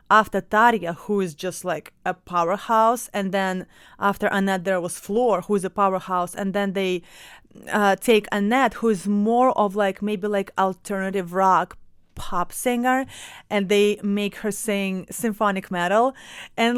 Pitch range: 195-235 Hz